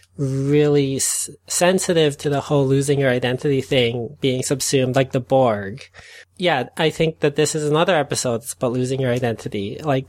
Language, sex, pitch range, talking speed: English, male, 125-150 Hz, 165 wpm